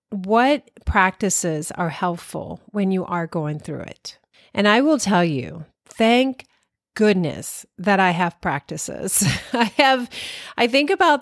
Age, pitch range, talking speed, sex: 40-59, 170-200 Hz, 140 wpm, female